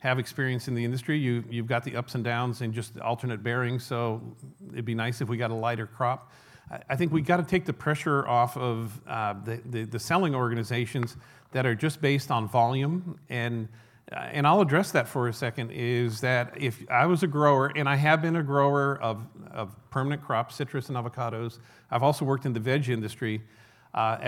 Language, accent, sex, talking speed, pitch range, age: English, American, male, 215 wpm, 115-140 Hz, 50-69